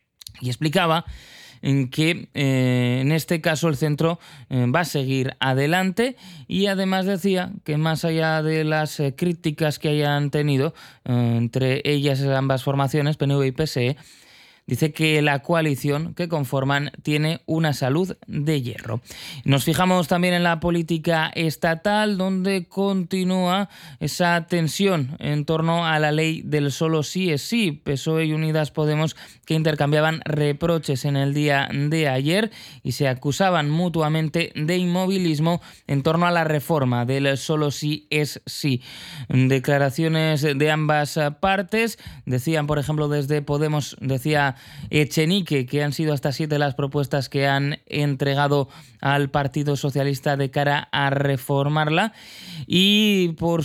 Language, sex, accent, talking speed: Spanish, male, Spanish, 140 wpm